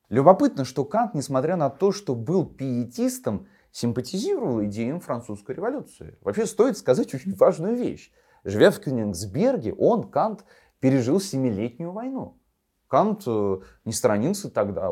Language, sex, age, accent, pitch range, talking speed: Russian, male, 30-49, native, 100-140 Hz, 125 wpm